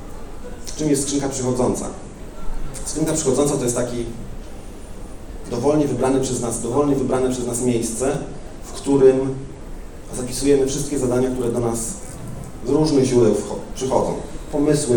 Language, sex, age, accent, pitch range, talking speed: Polish, male, 40-59, native, 100-135 Hz, 115 wpm